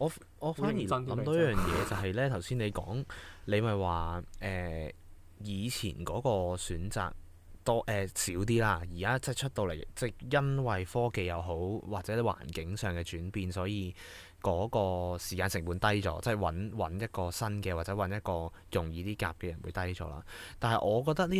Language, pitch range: Chinese, 90-110 Hz